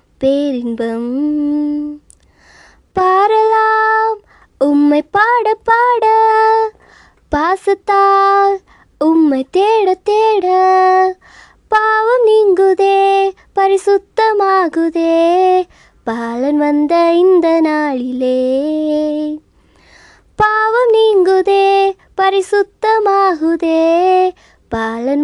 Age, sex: 20-39, male